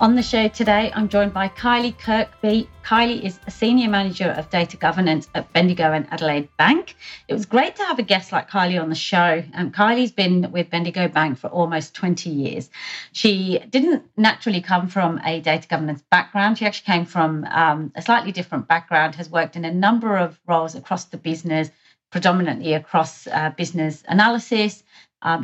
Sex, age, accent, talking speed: female, 30-49, British, 185 wpm